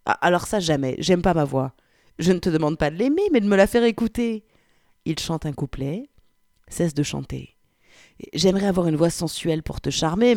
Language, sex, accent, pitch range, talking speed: French, female, French, 145-190 Hz, 205 wpm